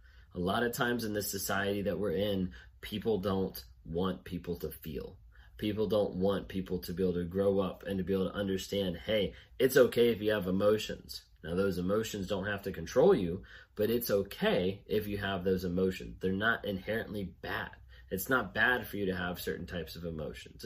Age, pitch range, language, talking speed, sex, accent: 30-49, 90-100 Hz, English, 205 wpm, male, American